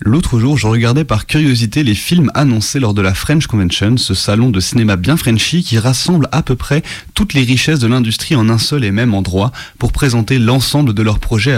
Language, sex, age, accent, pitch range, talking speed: French, male, 30-49, French, 105-135 Hz, 220 wpm